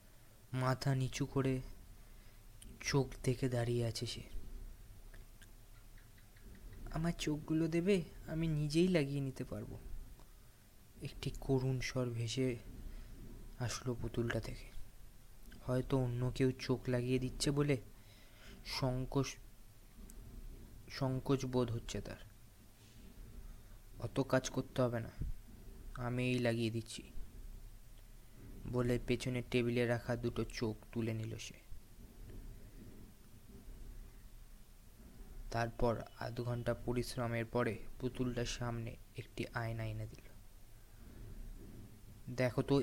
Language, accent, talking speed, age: Bengali, native, 75 wpm, 20-39